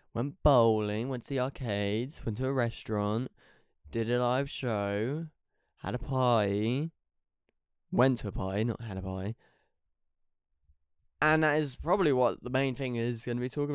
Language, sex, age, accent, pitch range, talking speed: English, male, 10-29, British, 100-140 Hz, 165 wpm